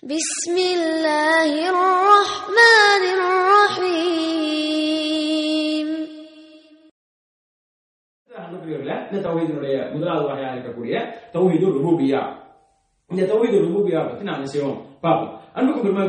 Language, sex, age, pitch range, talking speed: English, male, 20-39, 160-235 Hz, 45 wpm